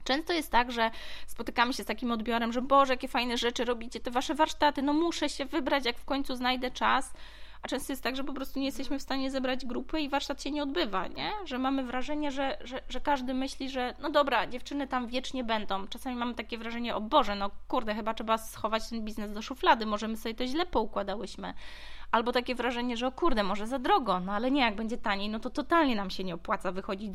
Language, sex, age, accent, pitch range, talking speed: Polish, female, 20-39, native, 205-270 Hz, 230 wpm